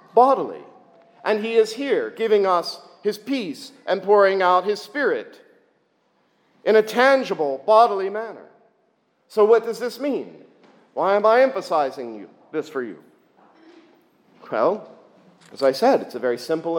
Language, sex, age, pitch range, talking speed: English, male, 50-69, 155-245 Hz, 145 wpm